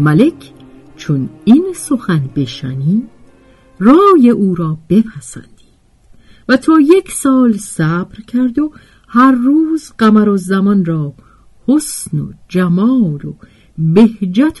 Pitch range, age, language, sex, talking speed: 155-245 Hz, 50-69, Persian, female, 110 wpm